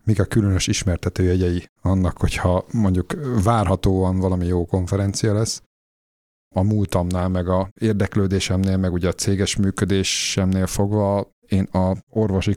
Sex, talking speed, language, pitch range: male, 125 wpm, Hungarian, 85-100 Hz